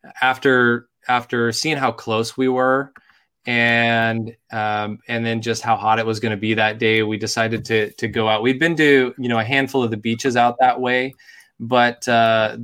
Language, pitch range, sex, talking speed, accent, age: English, 110-125 Hz, male, 200 wpm, American, 20-39